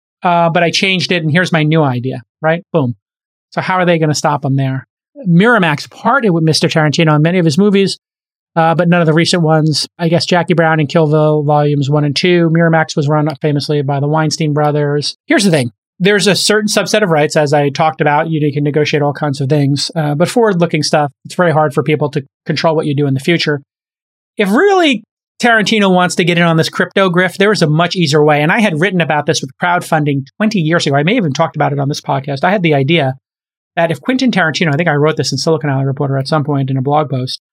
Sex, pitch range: male, 150-180 Hz